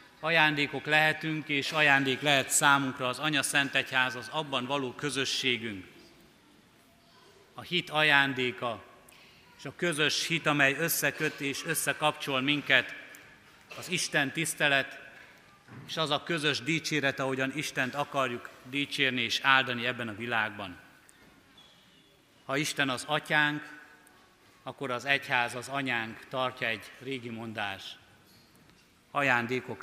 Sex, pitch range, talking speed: male, 125-150 Hz, 115 wpm